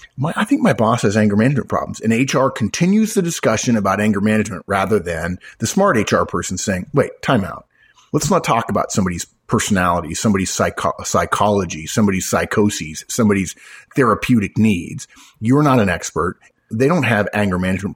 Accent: American